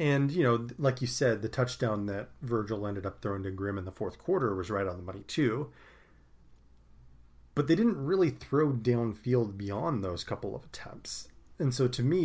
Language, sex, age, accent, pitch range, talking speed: English, male, 30-49, American, 100-125 Hz, 195 wpm